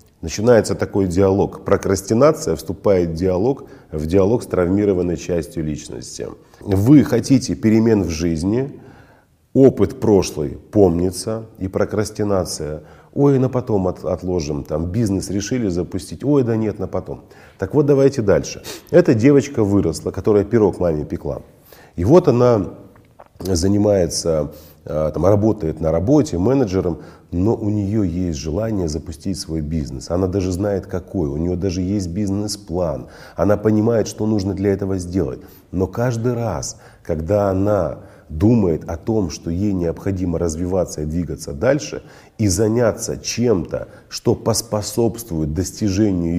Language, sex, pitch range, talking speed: Russian, male, 85-110 Hz, 130 wpm